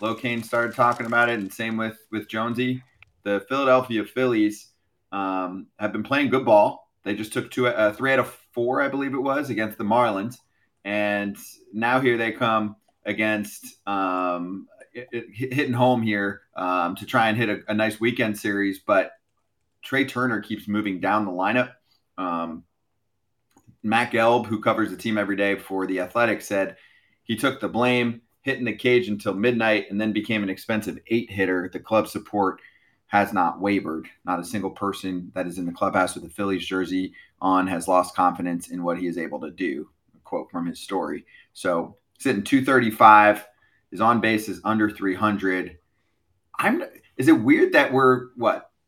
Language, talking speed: English, 180 wpm